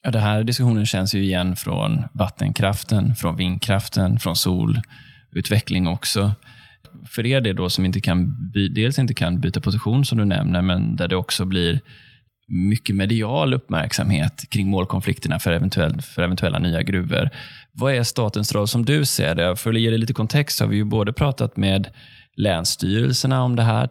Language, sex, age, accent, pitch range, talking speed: Swedish, male, 20-39, native, 95-125 Hz, 175 wpm